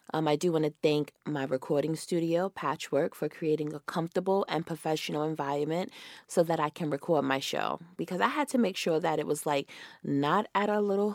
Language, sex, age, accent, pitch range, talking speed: English, female, 20-39, American, 145-180 Hz, 205 wpm